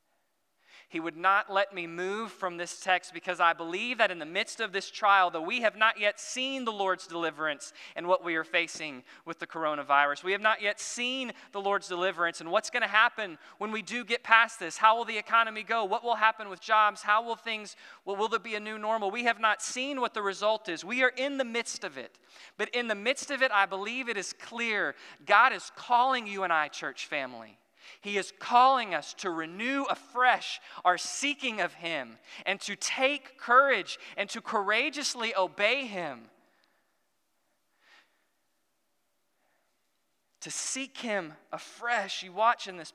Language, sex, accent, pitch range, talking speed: English, male, American, 185-235 Hz, 190 wpm